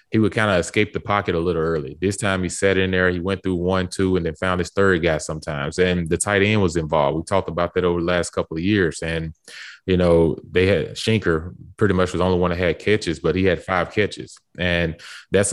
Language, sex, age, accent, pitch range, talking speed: English, male, 20-39, American, 85-100 Hz, 255 wpm